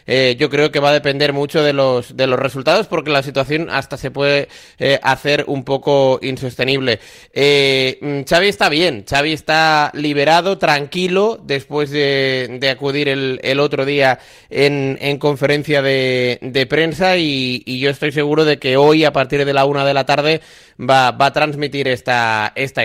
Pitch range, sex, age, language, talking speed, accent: 130-145 Hz, male, 30-49, Spanish, 180 wpm, Spanish